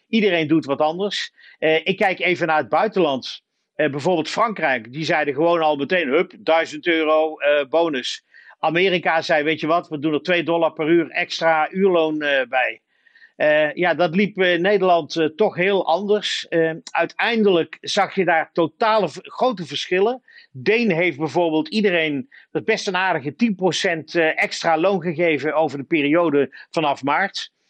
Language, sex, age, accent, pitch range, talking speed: Dutch, male, 50-69, Dutch, 155-195 Hz, 165 wpm